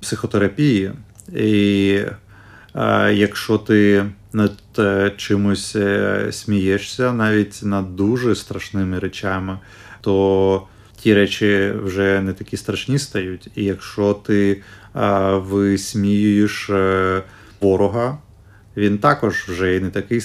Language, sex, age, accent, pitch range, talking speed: Ukrainian, male, 30-49, native, 100-110 Hz, 95 wpm